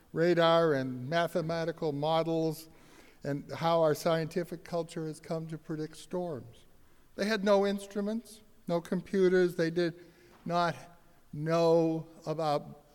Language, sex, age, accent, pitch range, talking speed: English, male, 60-79, American, 150-180 Hz, 115 wpm